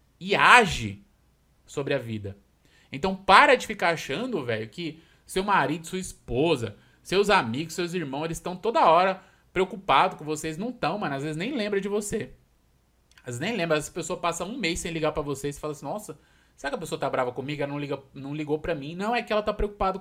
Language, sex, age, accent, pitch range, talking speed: Portuguese, male, 20-39, Brazilian, 140-190 Hz, 220 wpm